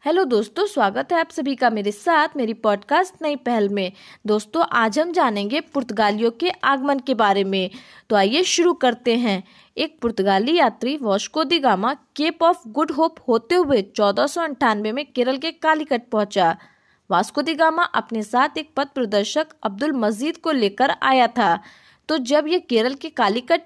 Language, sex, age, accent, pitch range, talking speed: Hindi, female, 20-39, native, 220-310 Hz, 165 wpm